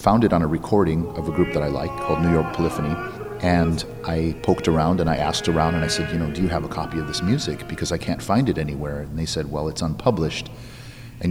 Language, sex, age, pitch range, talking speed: English, male, 40-59, 80-105 Hz, 260 wpm